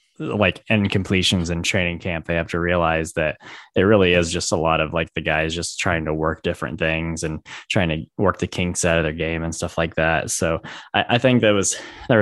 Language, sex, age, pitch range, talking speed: English, male, 10-29, 80-100 Hz, 235 wpm